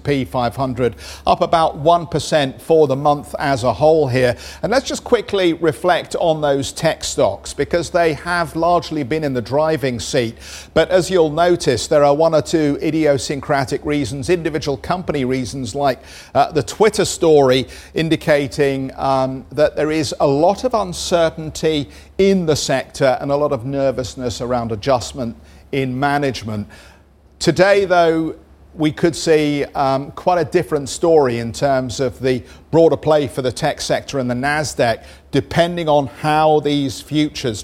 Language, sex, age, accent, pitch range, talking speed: English, male, 50-69, British, 130-165 Hz, 155 wpm